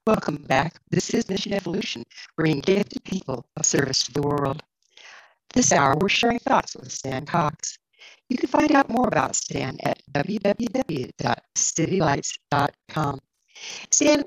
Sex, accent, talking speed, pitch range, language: female, American, 135 wpm, 150-195 Hz, English